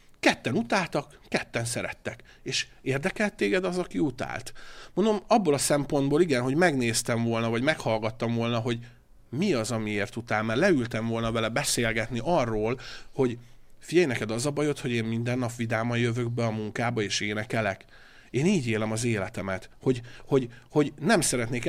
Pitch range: 110-140 Hz